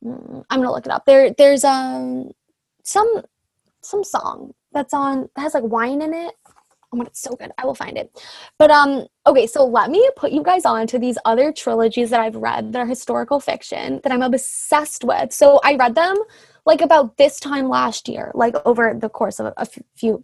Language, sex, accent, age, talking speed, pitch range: English, female, American, 10-29, 215 wpm, 240-305 Hz